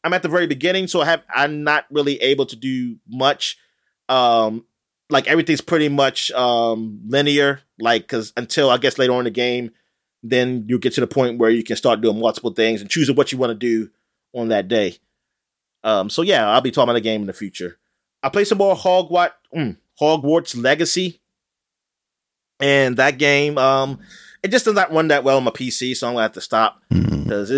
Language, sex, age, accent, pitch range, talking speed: English, male, 30-49, American, 115-150 Hz, 210 wpm